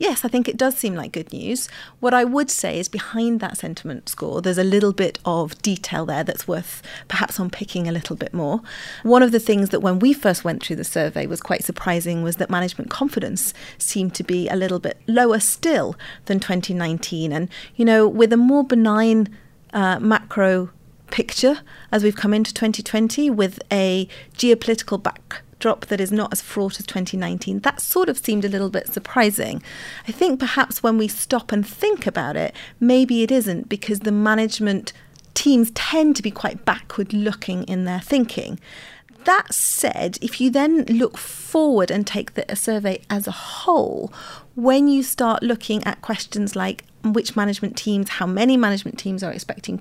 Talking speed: 185 wpm